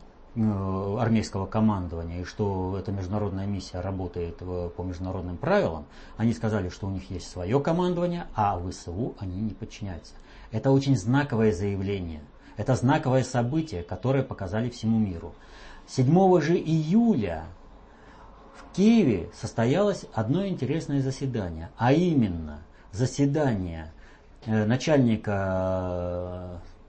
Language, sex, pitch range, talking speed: Russian, male, 90-125 Hz, 110 wpm